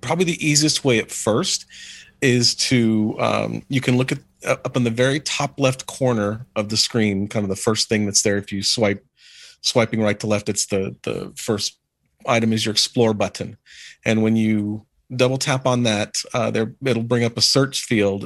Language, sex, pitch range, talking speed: English, male, 105-125 Hz, 200 wpm